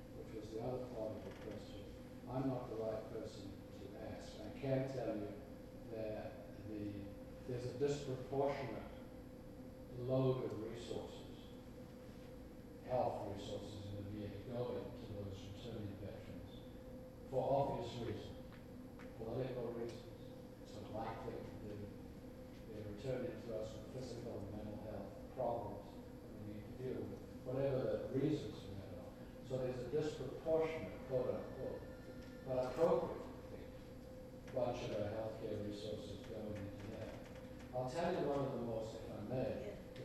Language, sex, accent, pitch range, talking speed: English, male, American, 105-130 Hz, 125 wpm